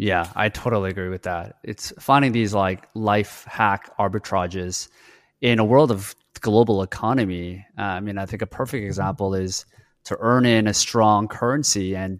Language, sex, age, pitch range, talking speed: English, male, 20-39, 95-110 Hz, 170 wpm